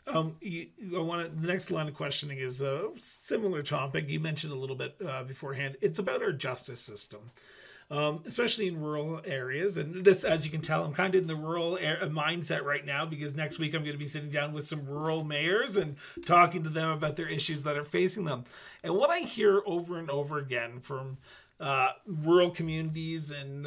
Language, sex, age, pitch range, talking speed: English, male, 30-49, 140-170 Hz, 215 wpm